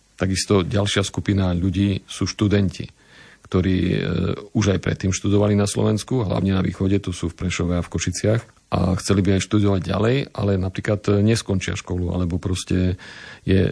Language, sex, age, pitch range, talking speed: Slovak, male, 40-59, 90-100 Hz, 160 wpm